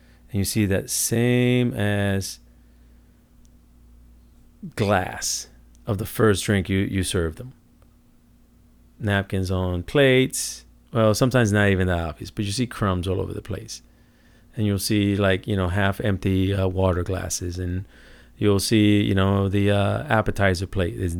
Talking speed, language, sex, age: 145 wpm, English, male, 40-59